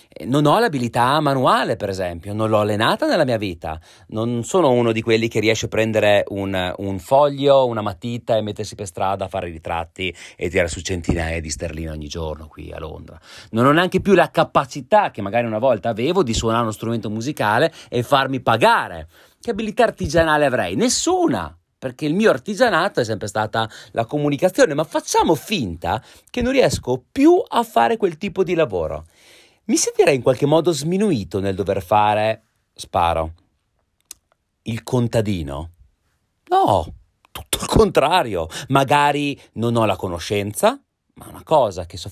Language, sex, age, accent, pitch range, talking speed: Italian, male, 30-49, native, 95-145 Hz, 165 wpm